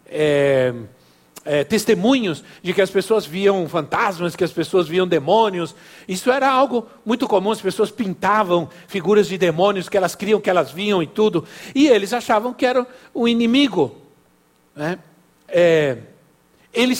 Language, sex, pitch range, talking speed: Portuguese, male, 140-195 Hz, 150 wpm